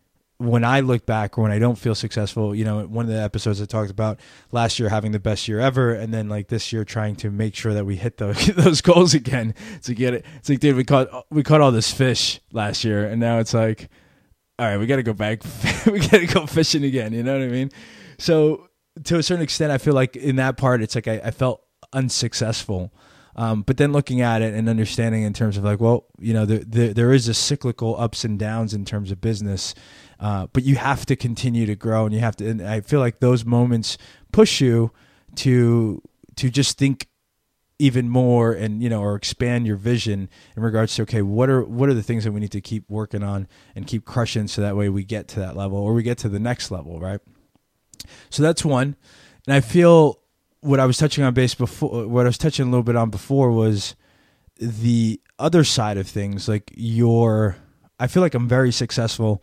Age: 20-39